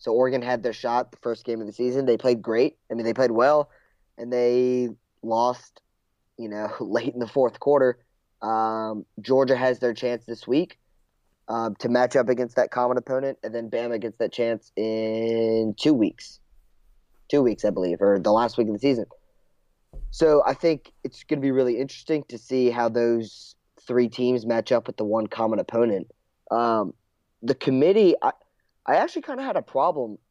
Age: 20-39